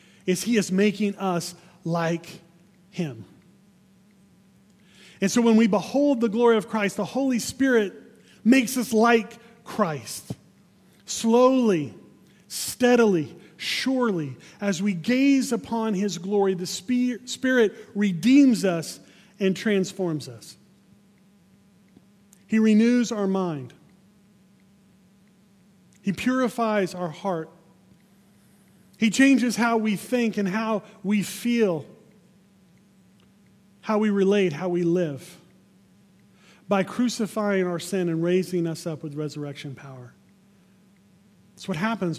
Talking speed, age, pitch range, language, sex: 110 wpm, 30-49, 185-215 Hz, English, male